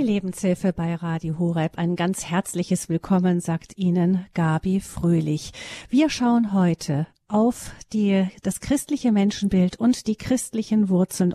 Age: 50-69